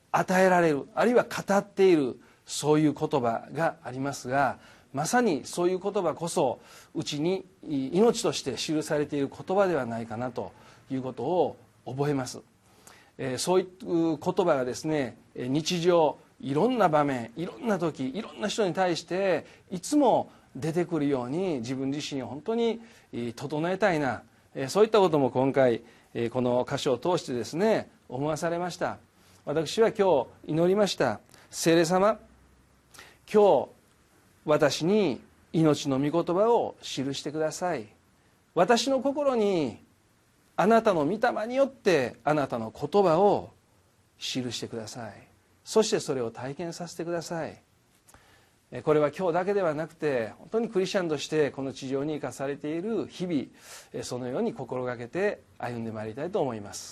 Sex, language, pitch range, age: male, Japanese, 125-185 Hz, 40-59